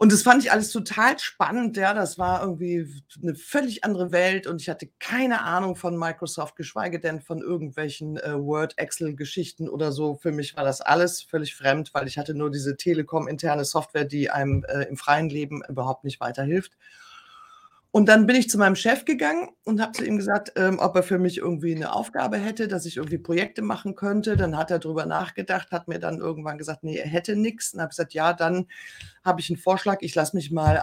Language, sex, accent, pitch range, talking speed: German, female, German, 150-205 Hz, 215 wpm